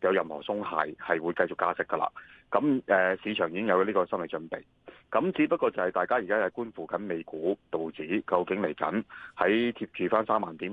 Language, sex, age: Chinese, male, 30-49